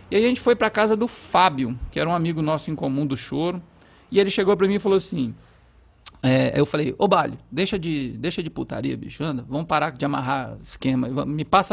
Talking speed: 225 wpm